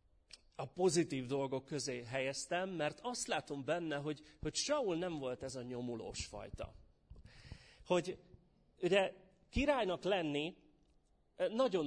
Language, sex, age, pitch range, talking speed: Hungarian, male, 30-49, 120-175 Hz, 115 wpm